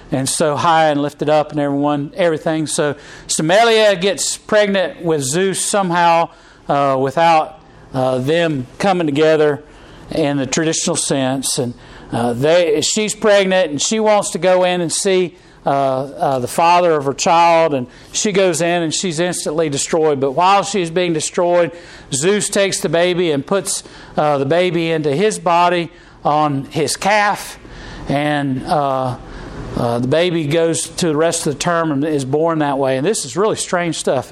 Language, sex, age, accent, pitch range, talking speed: English, male, 50-69, American, 150-185 Hz, 170 wpm